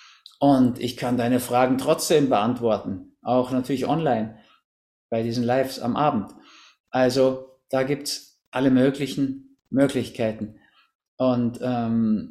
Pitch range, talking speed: 120-140 Hz, 115 wpm